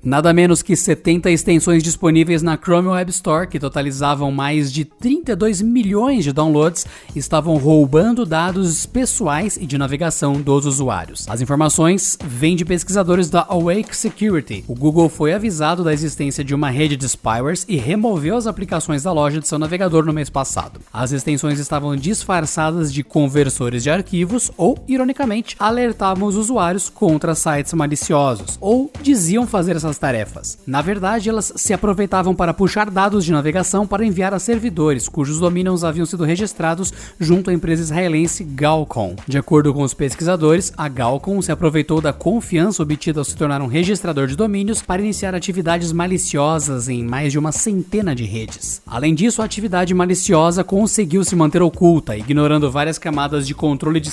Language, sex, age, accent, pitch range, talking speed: Portuguese, male, 20-39, Brazilian, 145-195 Hz, 165 wpm